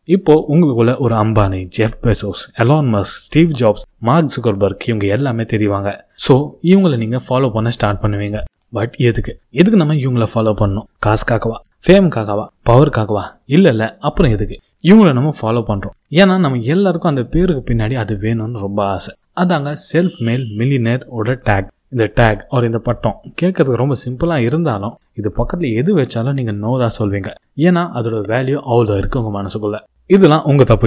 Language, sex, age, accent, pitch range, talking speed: Tamil, male, 20-39, native, 110-155 Hz, 155 wpm